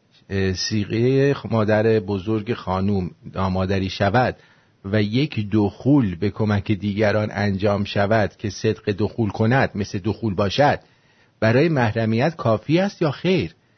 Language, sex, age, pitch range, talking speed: English, male, 50-69, 100-130 Hz, 120 wpm